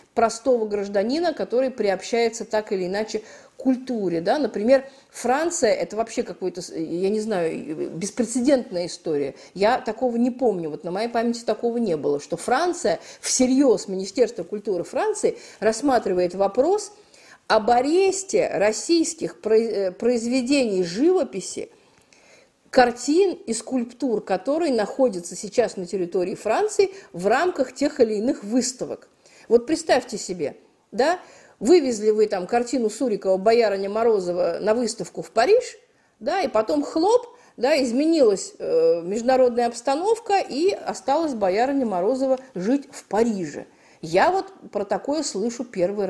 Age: 50-69